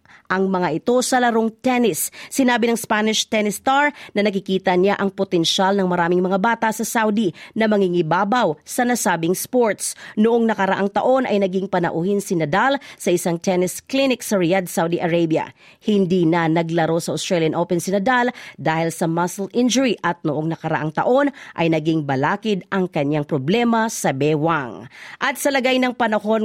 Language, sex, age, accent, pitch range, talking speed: Filipino, female, 40-59, native, 170-235 Hz, 160 wpm